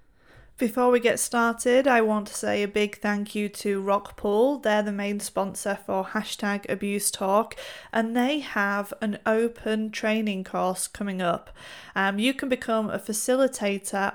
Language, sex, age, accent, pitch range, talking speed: English, female, 30-49, British, 200-235 Hz, 155 wpm